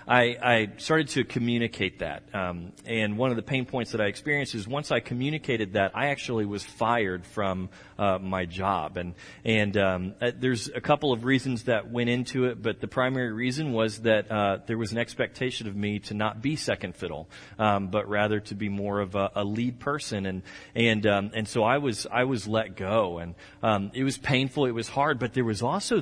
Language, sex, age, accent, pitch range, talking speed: English, male, 30-49, American, 100-125 Hz, 215 wpm